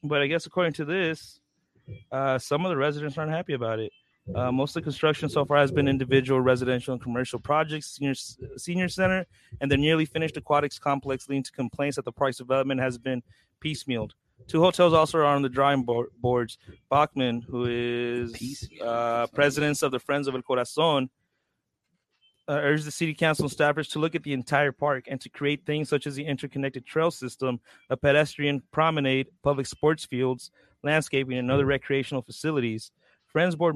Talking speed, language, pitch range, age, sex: 185 wpm, English, 125-150 Hz, 30-49, male